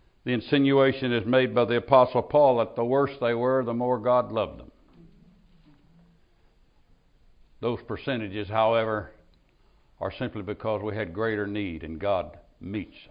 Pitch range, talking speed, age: 105-140 Hz, 140 wpm, 60-79